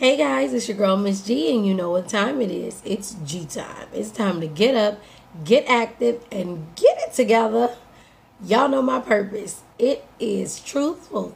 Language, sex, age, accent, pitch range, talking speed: English, female, 20-39, American, 205-235 Hz, 185 wpm